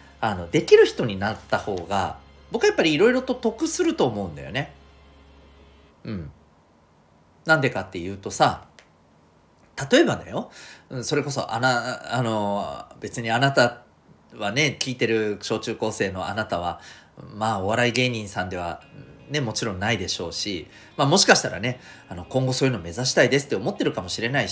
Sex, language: male, Japanese